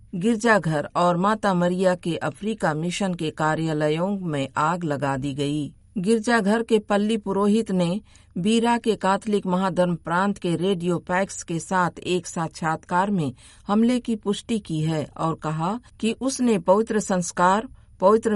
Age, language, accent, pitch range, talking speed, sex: 50-69, Hindi, native, 160-210 Hz, 145 wpm, female